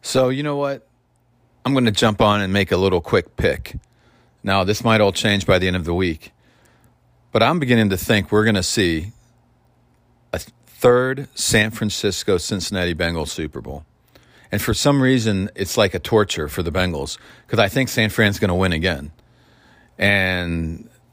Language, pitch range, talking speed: English, 90-115 Hz, 175 wpm